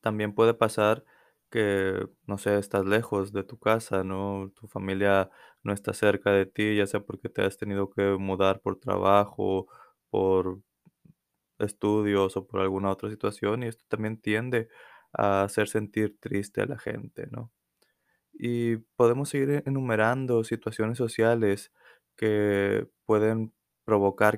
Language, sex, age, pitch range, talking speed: Spanish, male, 20-39, 100-110 Hz, 140 wpm